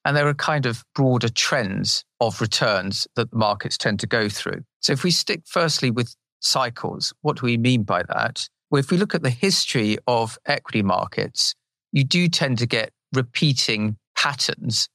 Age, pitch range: 40-59, 115-140 Hz